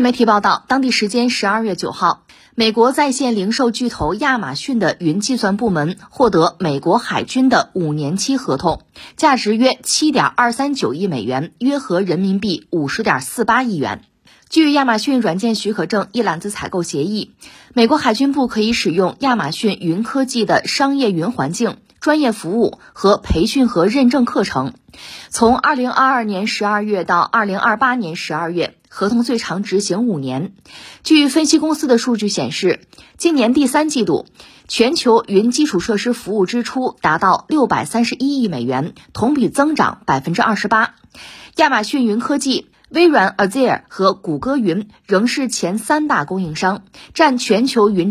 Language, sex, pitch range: Chinese, female, 195-265 Hz